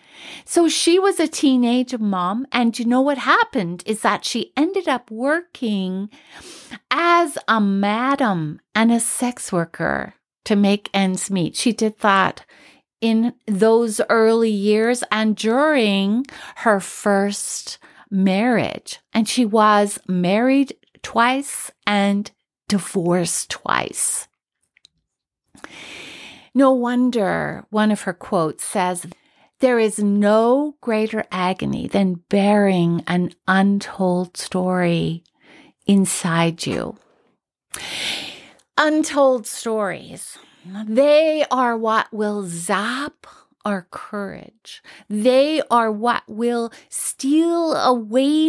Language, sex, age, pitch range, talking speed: English, female, 50-69, 200-260 Hz, 100 wpm